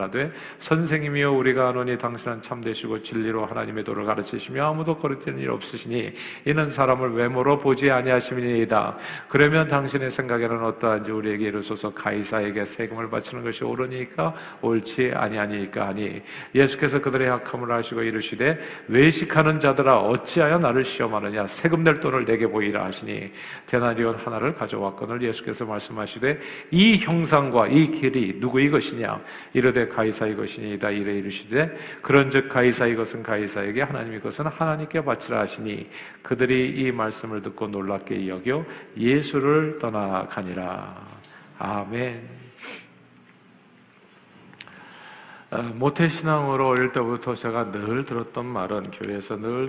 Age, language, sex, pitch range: 50-69, Korean, male, 105-135 Hz